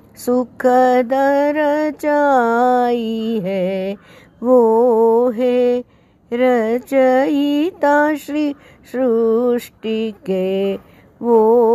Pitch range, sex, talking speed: 220-280 Hz, female, 50 wpm